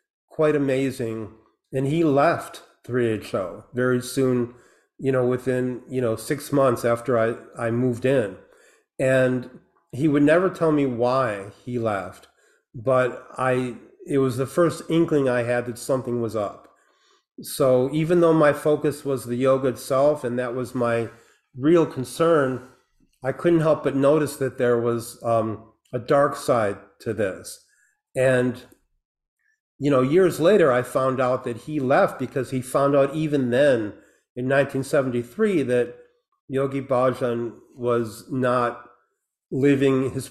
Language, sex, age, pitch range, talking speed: English, male, 40-59, 120-145 Hz, 145 wpm